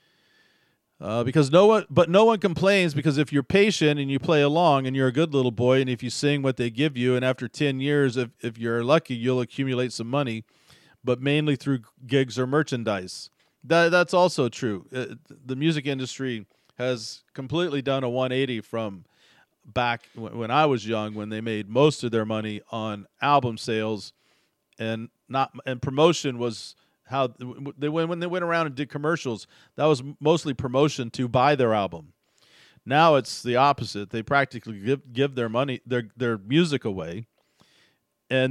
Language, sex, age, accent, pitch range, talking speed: English, male, 40-59, American, 115-145 Hz, 180 wpm